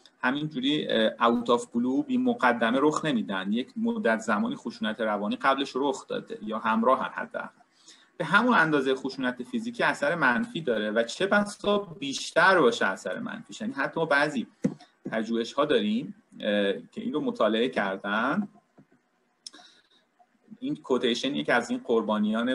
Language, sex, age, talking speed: Persian, male, 40-59, 135 wpm